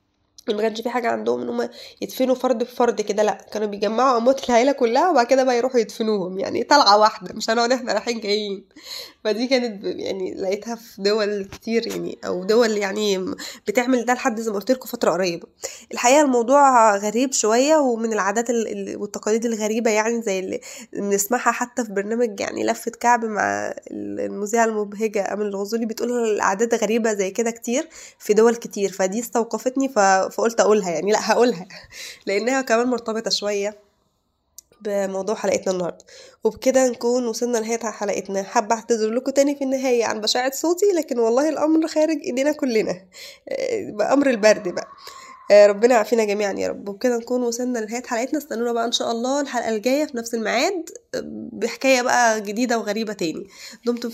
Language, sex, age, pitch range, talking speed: Arabic, female, 20-39, 210-250 Hz, 160 wpm